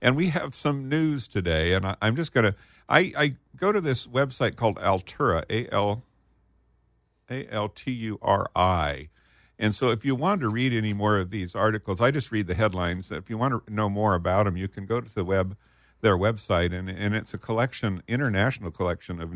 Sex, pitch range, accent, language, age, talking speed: male, 90-120 Hz, American, English, 50-69, 190 wpm